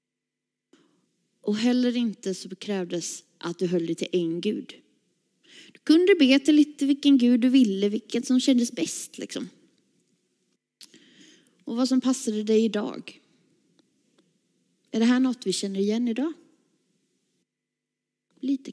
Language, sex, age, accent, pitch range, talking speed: Swedish, female, 30-49, native, 210-275 Hz, 130 wpm